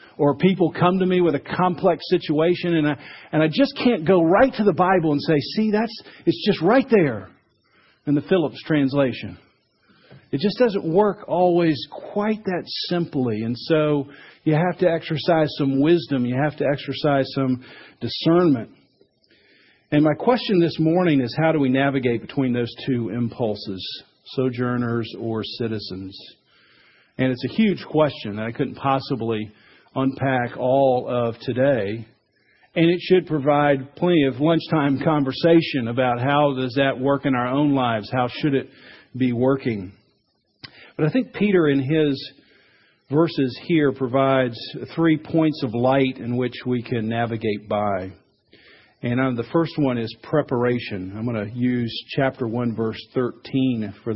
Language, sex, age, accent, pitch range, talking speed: English, male, 50-69, American, 120-160 Hz, 155 wpm